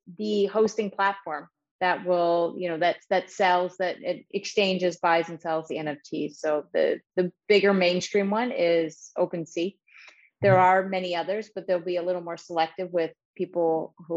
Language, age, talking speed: English, 30-49, 170 wpm